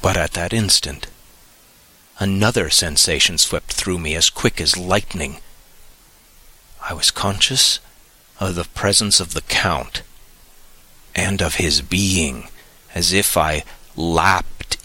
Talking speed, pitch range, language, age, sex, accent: 120 wpm, 80-95 Hz, English, 40-59, male, American